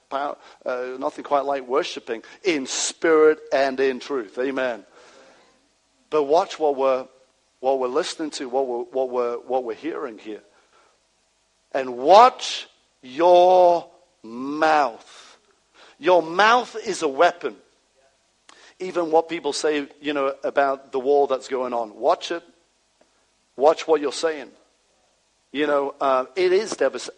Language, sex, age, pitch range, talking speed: English, male, 50-69, 130-180 Hz, 130 wpm